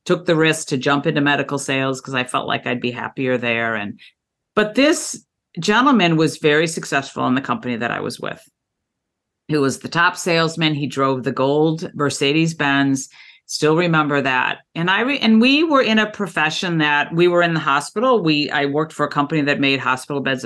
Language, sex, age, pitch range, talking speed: English, female, 50-69, 145-195 Hz, 200 wpm